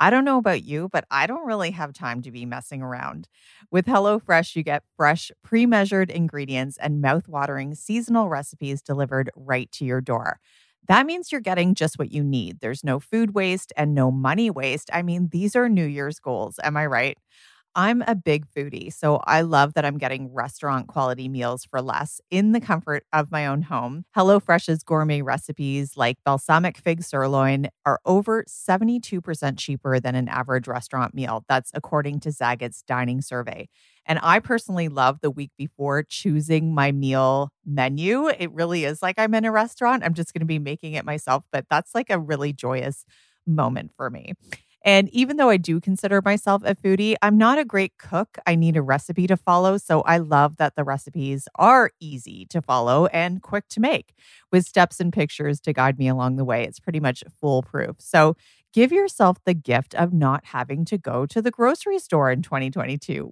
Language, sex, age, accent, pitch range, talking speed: English, female, 30-49, American, 135-190 Hz, 190 wpm